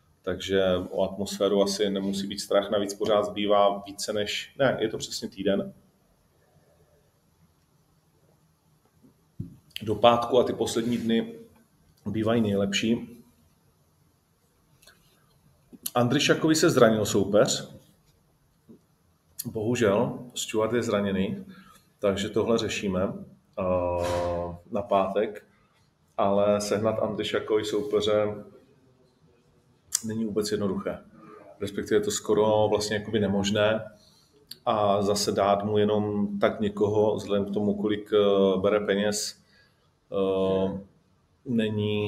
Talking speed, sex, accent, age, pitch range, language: 95 wpm, male, native, 40-59, 100-115 Hz, Czech